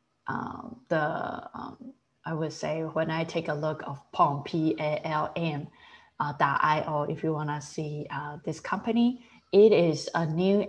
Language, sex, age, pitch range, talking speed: English, female, 20-39, 150-185 Hz, 155 wpm